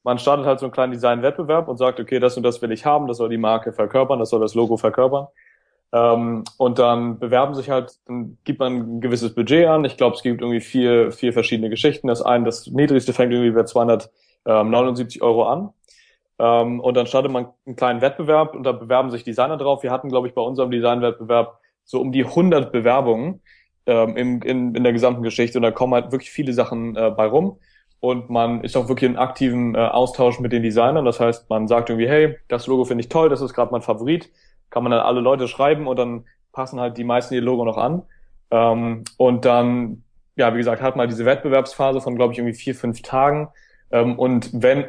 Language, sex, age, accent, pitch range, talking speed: German, male, 20-39, German, 120-130 Hz, 225 wpm